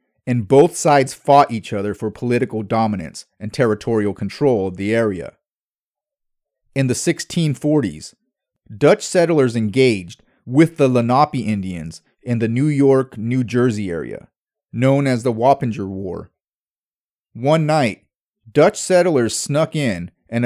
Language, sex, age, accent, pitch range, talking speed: English, male, 30-49, American, 105-145 Hz, 130 wpm